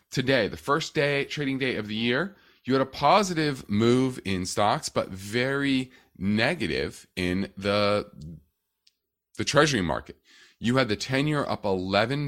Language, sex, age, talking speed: English, male, 30-49, 150 wpm